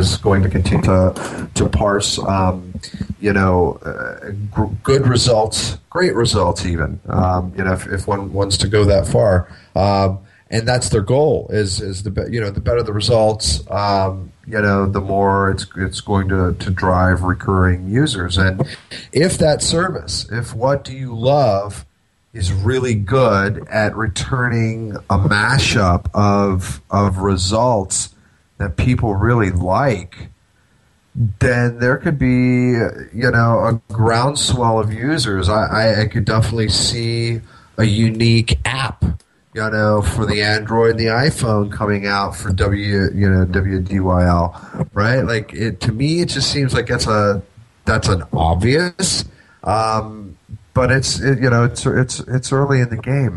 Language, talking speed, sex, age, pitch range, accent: English, 160 wpm, male, 40-59, 95-120 Hz, American